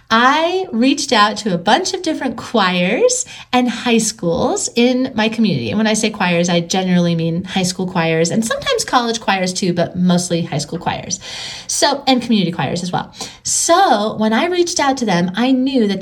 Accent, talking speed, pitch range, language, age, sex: American, 195 wpm, 190-255 Hz, English, 30-49, female